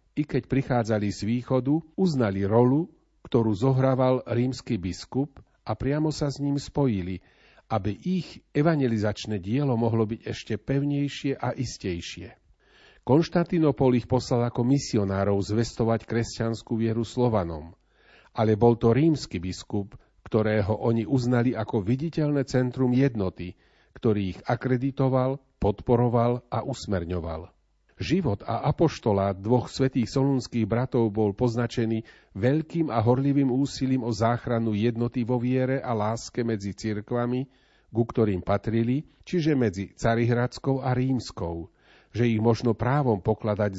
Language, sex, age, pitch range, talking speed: Slovak, male, 40-59, 110-135 Hz, 120 wpm